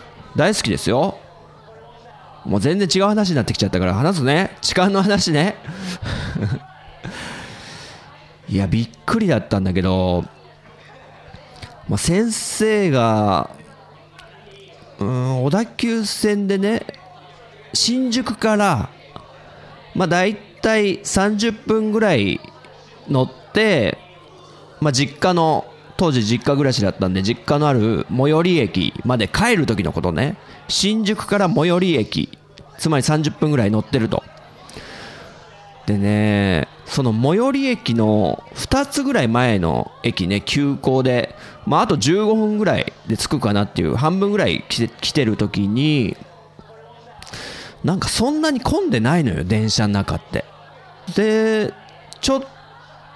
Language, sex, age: Japanese, male, 40-59